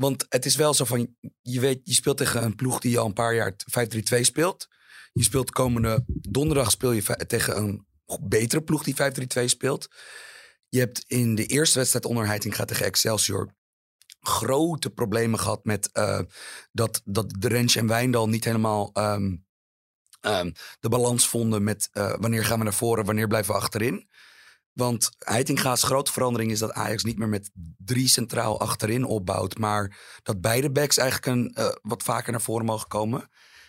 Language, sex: Dutch, male